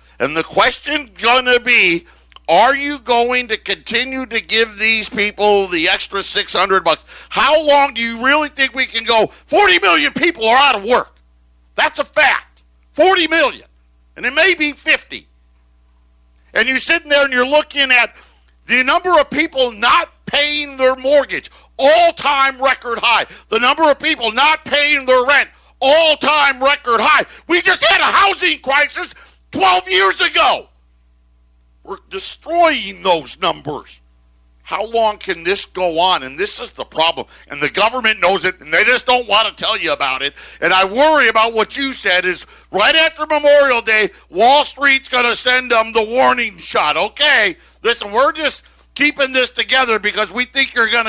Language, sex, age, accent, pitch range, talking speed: English, male, 50-69, American, 200-290 Hz, 175 wpm